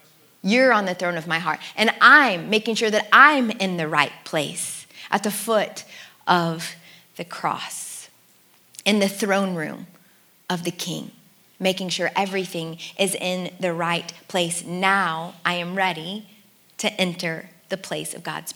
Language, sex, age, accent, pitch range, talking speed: English, female, 20-39, American, 170-200 Hz, 155 wpm